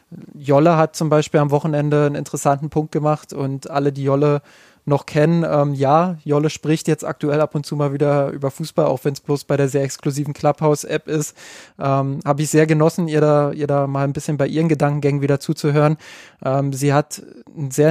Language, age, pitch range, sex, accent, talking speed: German, 20-39, 140-155 Hz, male, German, 200 wpm